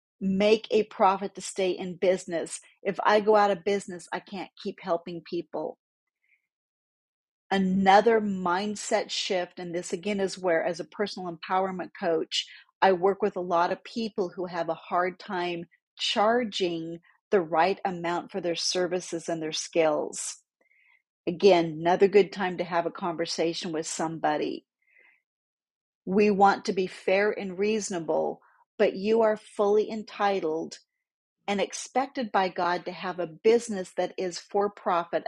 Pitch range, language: 170-205 Hz, English